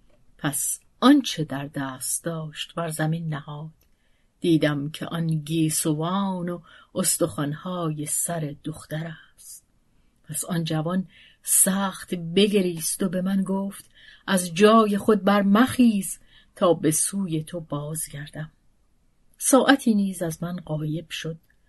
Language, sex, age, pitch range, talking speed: Persian, female, 40-59, 155-190 Hz, 115 wpm